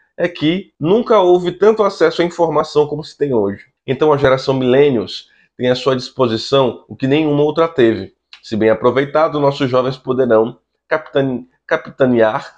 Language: Portuguese